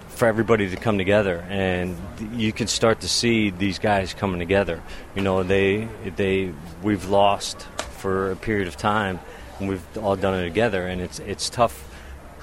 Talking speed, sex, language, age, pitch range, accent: 175 wpm, male, English, 40-59, 90-110 Hz, American